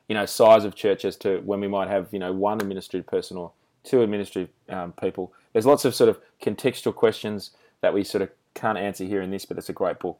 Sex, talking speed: male, 245 wpm